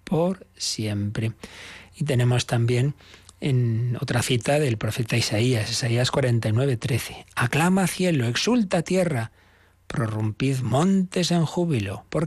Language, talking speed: Spanish, 110 wpm